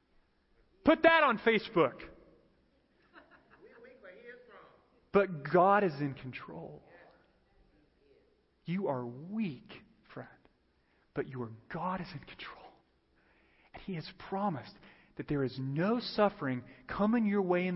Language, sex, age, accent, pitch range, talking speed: English, male, 30-49, American, 125-185 Hz, 110 wpm